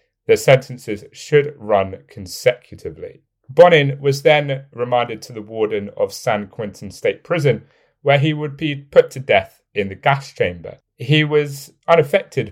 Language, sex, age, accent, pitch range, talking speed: English, male, 30-49, British, 120-160 Hz, 150 wpm